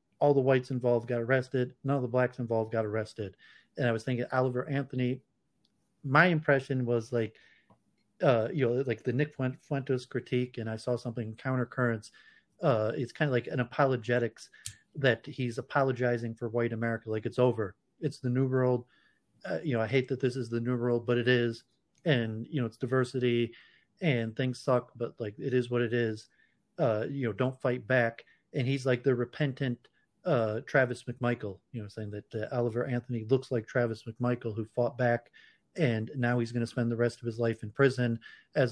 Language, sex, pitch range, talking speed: English, male, 115-130 Hz, 200 wpm